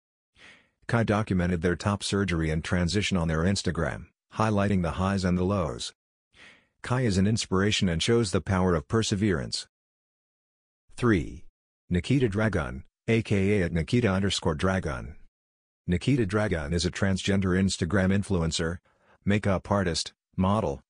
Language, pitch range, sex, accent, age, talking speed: English, 85-105 Hz, male, American, 50-69, 125 wpm